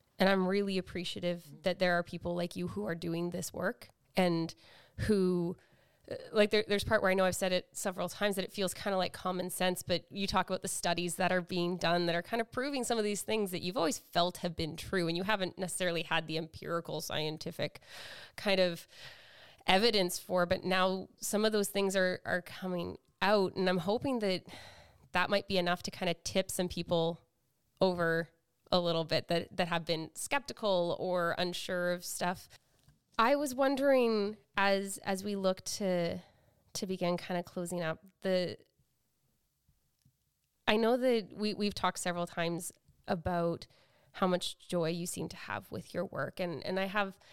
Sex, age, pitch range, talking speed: female, 20-39, 170-195 Hz, 190 wpm